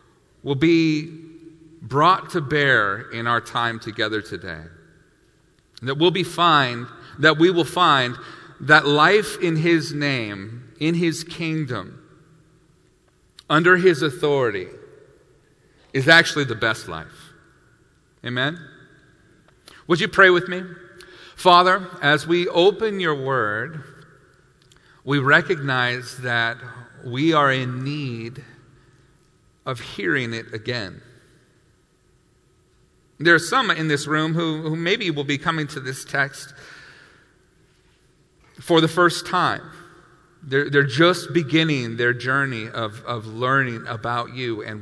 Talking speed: 120 wpm